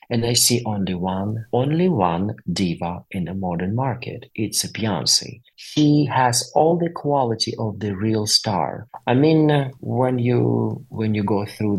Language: English